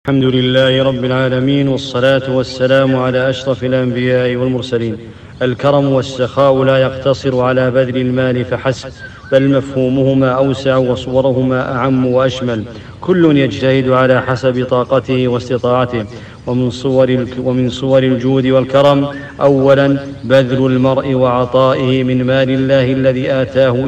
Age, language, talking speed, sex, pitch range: 40-59, English, 110 wpm, male, 130-135 Hz